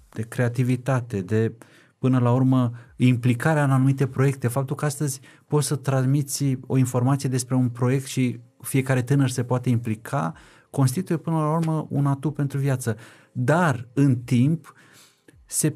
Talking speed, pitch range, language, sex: 150 wpm, 125-150 Hz, Romanian, male